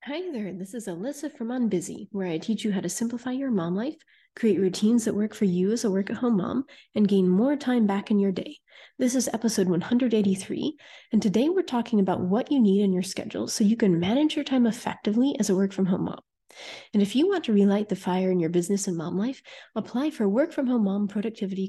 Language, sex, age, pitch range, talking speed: English, female, 30-49, 195-255 Hz, 220 wpm